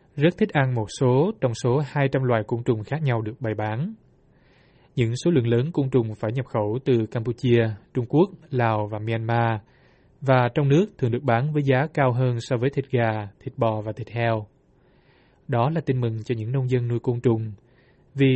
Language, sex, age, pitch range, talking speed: Vietnamese, male, 20-39, 115-135 Hz, 205 wpm